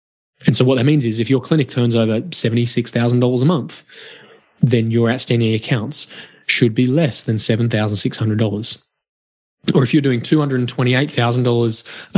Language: English